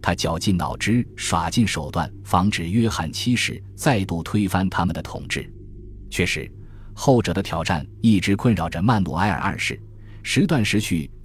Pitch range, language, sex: 85-115 Hz, Chinese, male